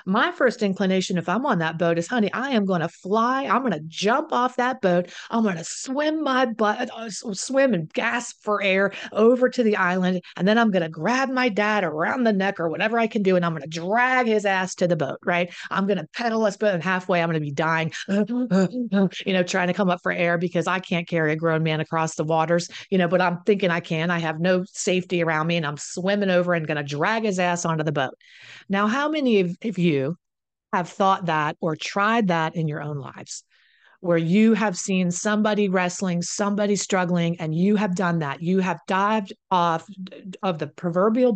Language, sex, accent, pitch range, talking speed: English, female, American, 170-210 Hz, 225 wpm